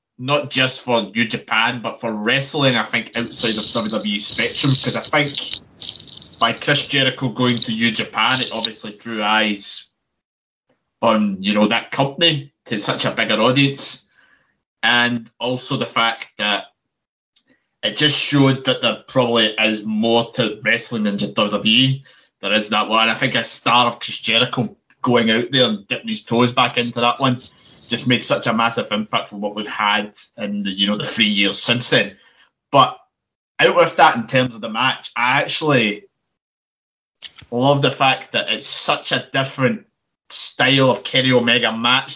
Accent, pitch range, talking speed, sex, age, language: British, 110-135 Hz, 175 wpm, male, 20-39, English